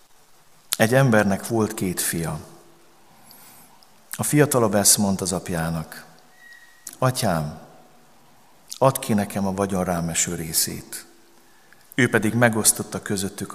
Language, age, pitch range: Hungarian, 50-69, 95-115 Hz